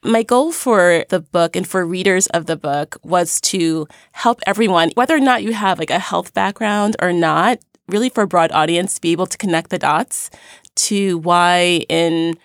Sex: female